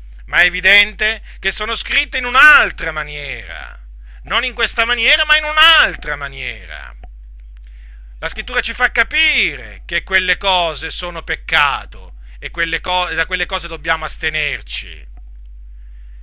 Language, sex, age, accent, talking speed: Italian, male, 40-59, native, 120 wpm